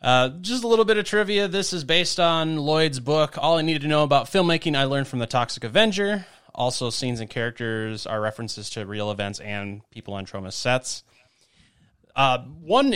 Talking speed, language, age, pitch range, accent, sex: 195 wpm, English, 30-49, 110-145 Hz, American, male